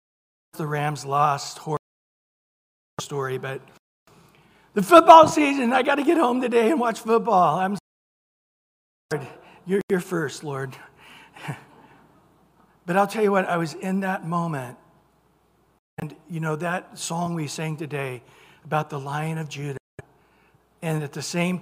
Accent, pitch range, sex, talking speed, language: American, 155-195 Hz, male, 145 wpm, English